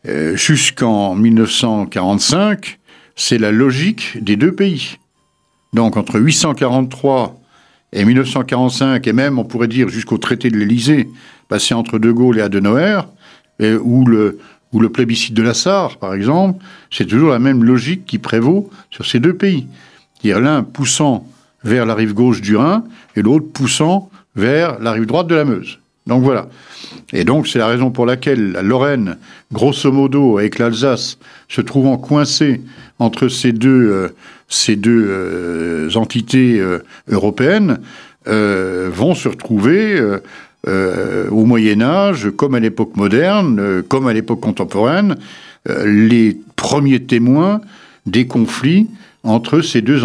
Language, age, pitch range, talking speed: French, 60-79, 110-150 Hz, 145 wpm